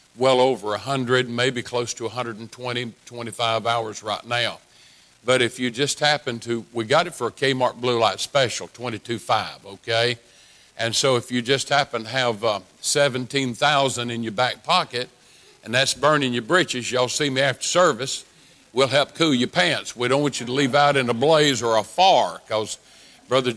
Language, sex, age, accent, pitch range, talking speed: English, male, 50-69, American, 120-140 Hz, 185 wpm